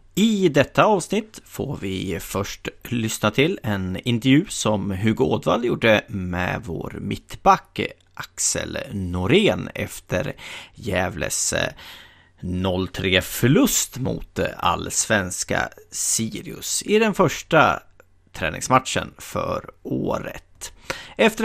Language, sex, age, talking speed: Swedish, male, 30-49, 90 wpm